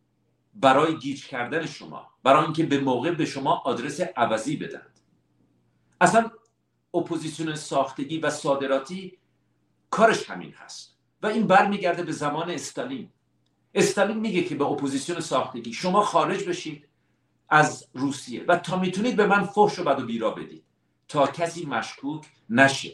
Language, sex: Persian, male